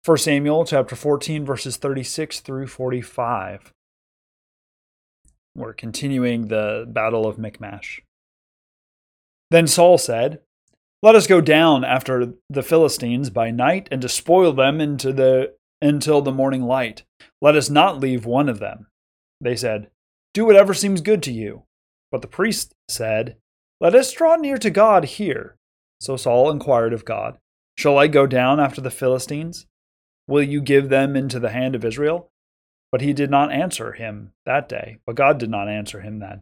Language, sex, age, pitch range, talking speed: English, male, 30-49, 110-150 Hz, 160 wpm